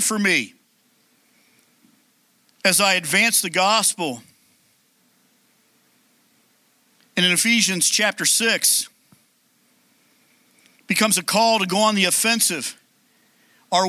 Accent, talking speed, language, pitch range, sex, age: American, 90 wpm, English, 205-240 Hz, male, 50-69